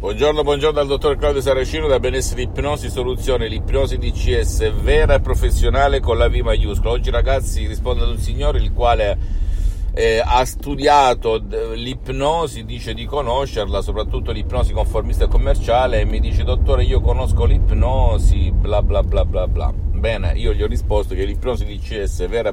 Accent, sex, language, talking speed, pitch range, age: native, male, Italian, 170 wpm, 85-115 Hz, 50-69